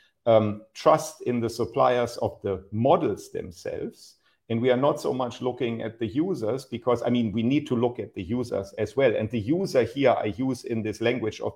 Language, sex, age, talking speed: English, male, 50-69, 215 wpm